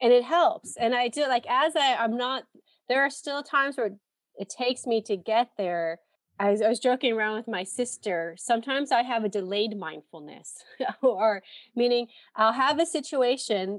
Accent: American